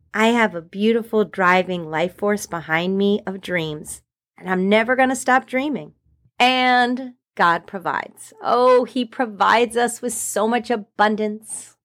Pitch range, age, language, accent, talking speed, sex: 205-280 Hz, 30-49, English, American, 140 wpm, female